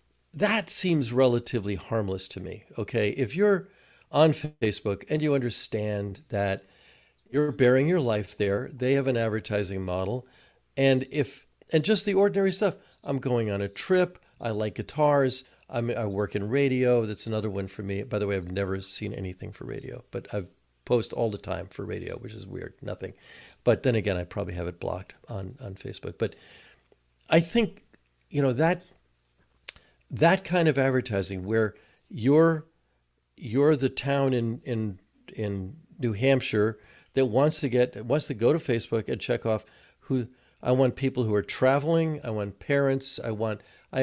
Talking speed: 175 wpm